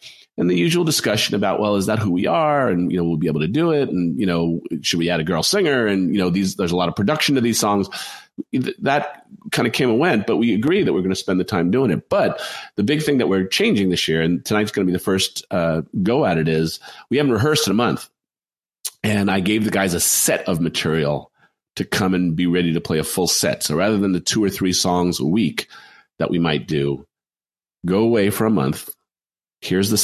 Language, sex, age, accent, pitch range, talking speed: English, male, 40-59, American, 90-110 Hz, 250 wpm